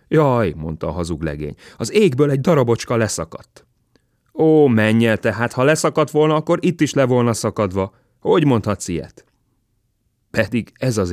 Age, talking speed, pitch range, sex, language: 30-49, 150 wpm, 100-135 Hz, male, Hungarian